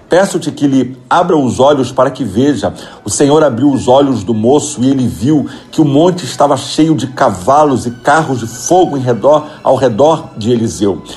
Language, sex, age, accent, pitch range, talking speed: Portuguese, male, 50-69, Brazilian, 130-170 Hz, 195 wpm